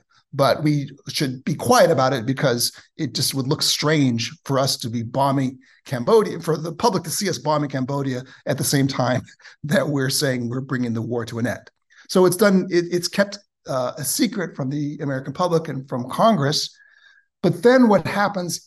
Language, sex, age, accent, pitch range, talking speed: English, male, 60-79, American, 140-180 Hz, 195 wpm